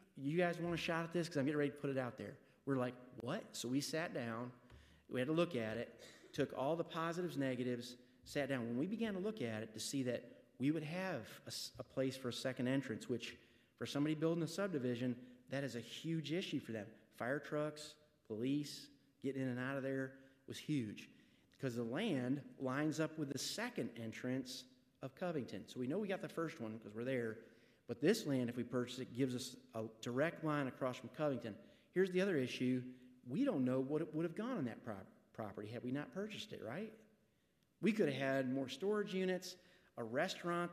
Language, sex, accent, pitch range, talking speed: English, male, American, 125-160 Hz, 220 wpm